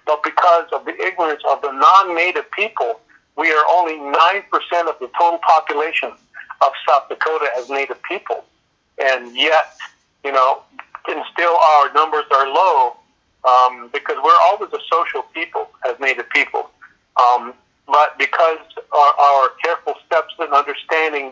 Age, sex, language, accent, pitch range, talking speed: 50-69, male, English, American, 130-155 Hz, 145 wpm